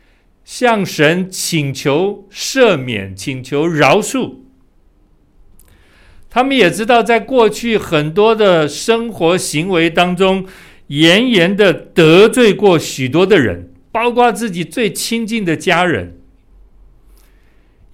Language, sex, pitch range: Chinese, male, 130-205 Hz